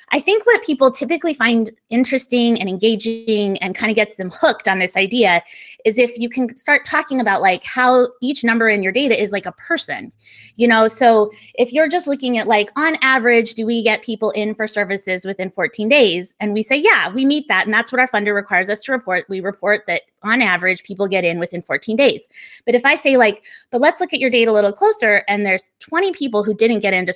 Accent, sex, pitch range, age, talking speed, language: American, female, 200-265 Hz, 20-39, 235 wpm, English